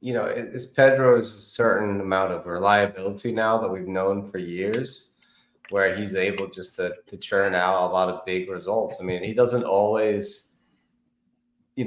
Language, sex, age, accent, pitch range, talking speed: English, male, 30-49, American, 95-120 Hz, 165 wpm